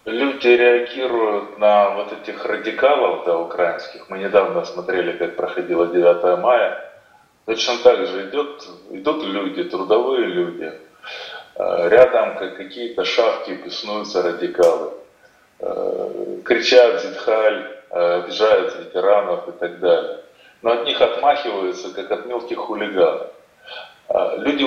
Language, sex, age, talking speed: Russian, male, 30-49, 110 wpm